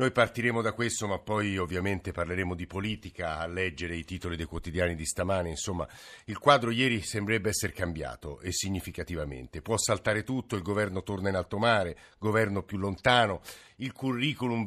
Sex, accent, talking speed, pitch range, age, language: male, native, 170 wpm, 90-115 Hz, 50-69, Italian